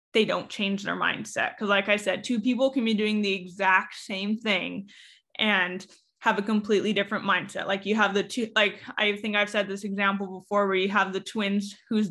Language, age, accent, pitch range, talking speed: English, 20-39, American, 195-215 Hz, 215 wpm